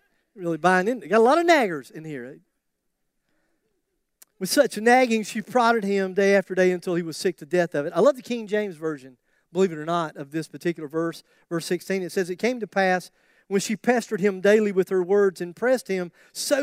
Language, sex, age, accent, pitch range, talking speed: English, male, 40-59, American, 185-265 Hz, 225 wpm